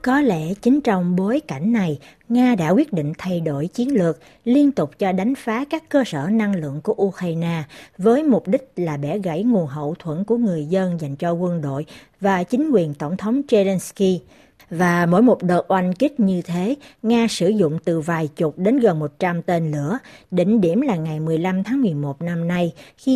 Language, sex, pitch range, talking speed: Vietnamese, female, 165-230 Hz, 200 wpm